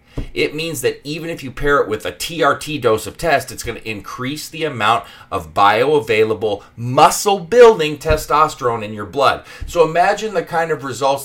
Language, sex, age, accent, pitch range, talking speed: English, male, 30-49, American, 110-155 Hz, 175 wpm